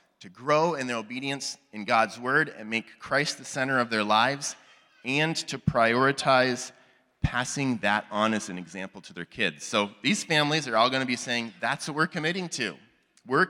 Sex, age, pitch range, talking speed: male, 30-49, 105-140 Hz, 190 wpm